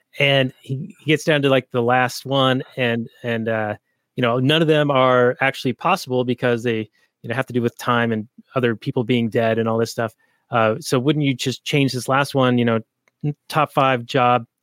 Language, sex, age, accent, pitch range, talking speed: English, male, 30-49, American, 120-145 Hz, 215 wpm